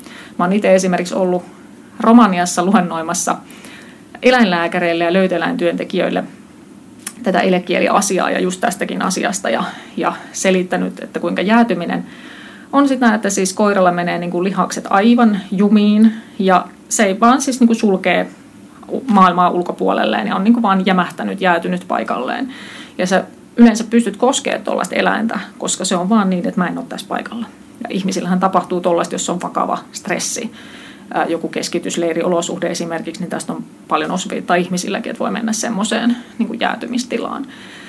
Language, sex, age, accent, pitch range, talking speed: Finnish, female, 30-49, native, 180-235 Hz, 145 wpm